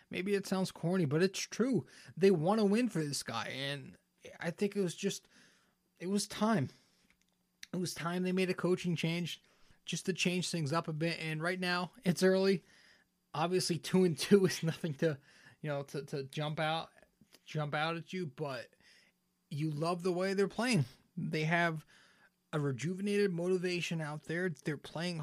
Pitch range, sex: 150-185 Hz, male